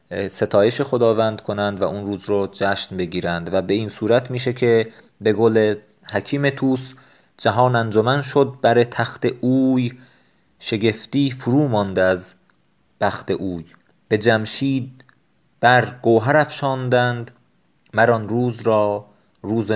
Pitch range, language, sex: 105-130 Hz, Persian, male